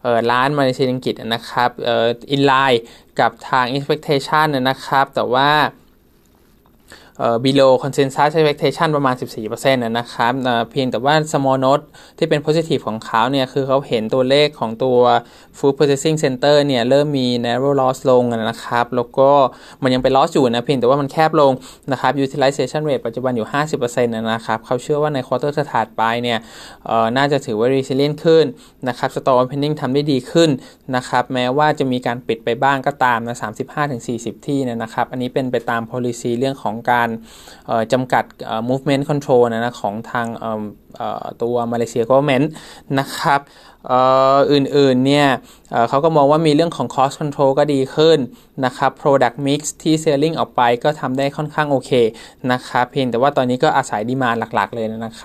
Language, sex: Thai, male